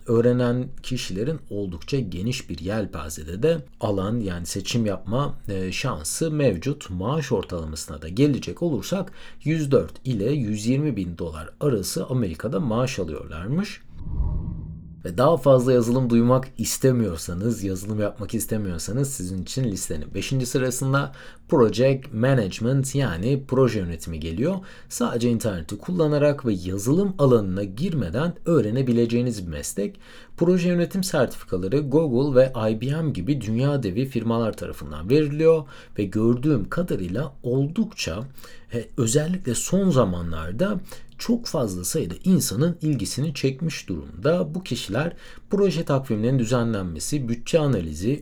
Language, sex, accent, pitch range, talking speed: Turkish, male, native, 100-145 Hz, 115 wpm